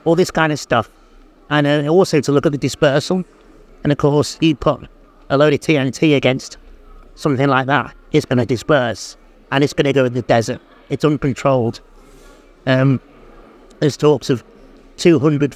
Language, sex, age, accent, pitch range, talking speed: English, male, 50-69, British, 125-150 Hz, 165 wpm